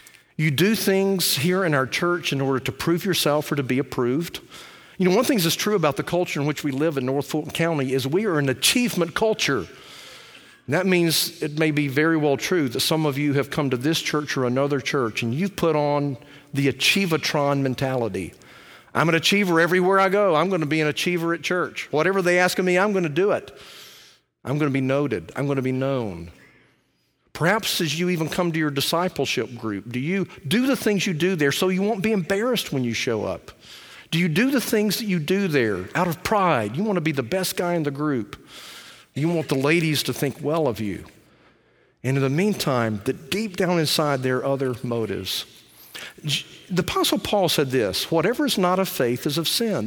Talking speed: 215 wpm